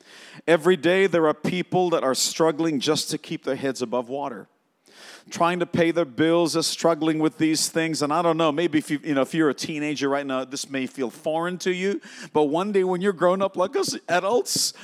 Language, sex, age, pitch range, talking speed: English, male, 50-69, 150-185 Hz, 225 wpm